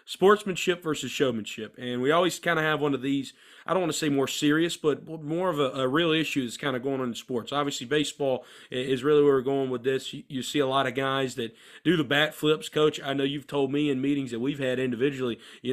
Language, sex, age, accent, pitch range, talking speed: English, male, 30-49, American, 130-150 Hz, 255 wpm